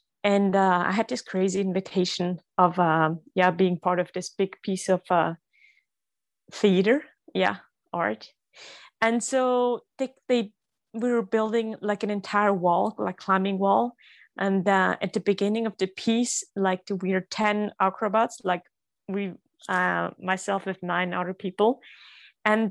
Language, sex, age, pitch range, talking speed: English, female, 20-39, 185-220 Hz, 150 wpm